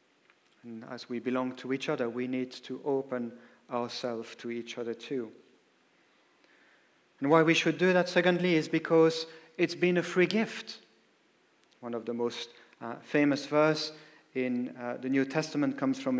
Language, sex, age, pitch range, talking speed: English, male, 40-59, 125-160 Hz, 165 wpm